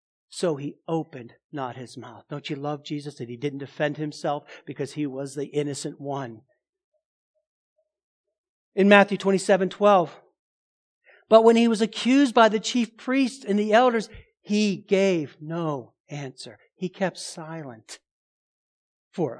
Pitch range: 150-205 Hz